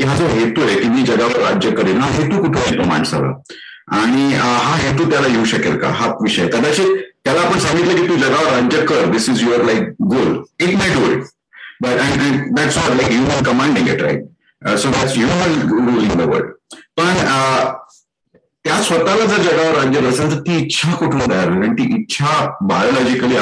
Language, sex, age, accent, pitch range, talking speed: Marathi, male, 50-69, native, 115-170 Hz, 170 wpm